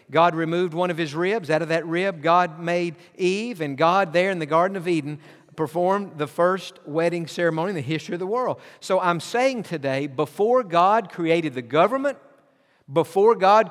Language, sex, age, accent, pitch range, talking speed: English, male, 50-69, American, 150-190 Hz, 190 wpm